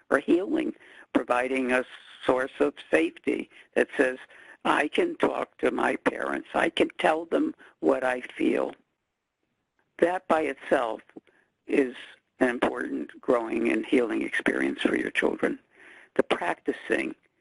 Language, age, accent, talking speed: English, 60-79, American, 130 wpm